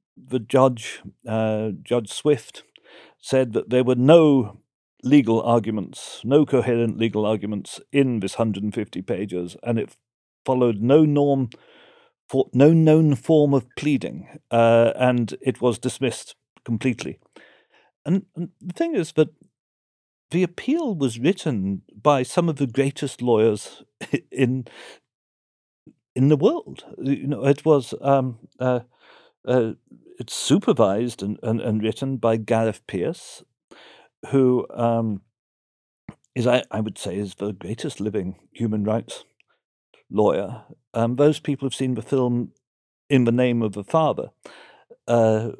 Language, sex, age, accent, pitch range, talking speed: English, male, 50-69, British, 110-140 Hz, 135 wpm